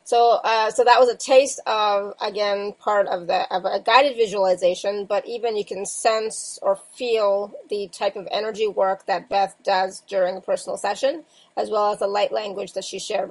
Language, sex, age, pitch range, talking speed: English, female, 30-49, 200-260 Hz, 200 wpm